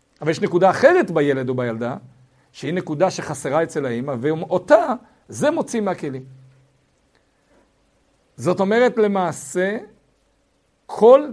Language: Hebrew